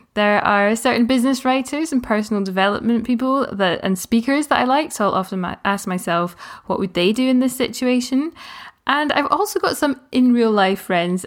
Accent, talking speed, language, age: British, 195 wpm, English, 10-29